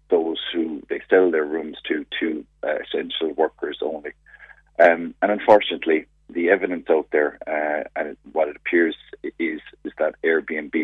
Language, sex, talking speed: English, male, 160 wpm